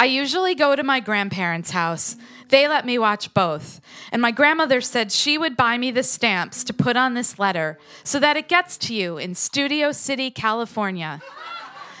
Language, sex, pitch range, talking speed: English, female, 200-280 Hz, 185 wpm